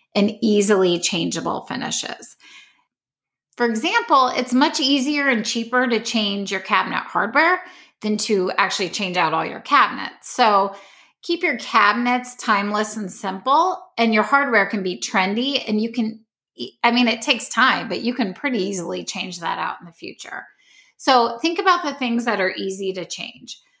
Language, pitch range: English, 200-270 Hz